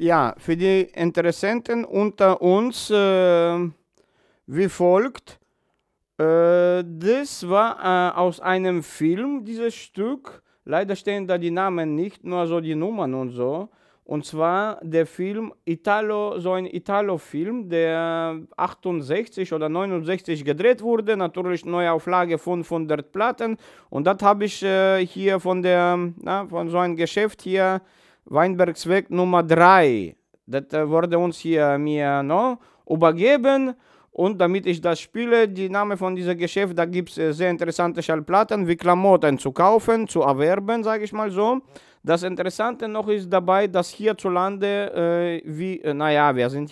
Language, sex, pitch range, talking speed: German, male, 165-200 Hz, 145 wpm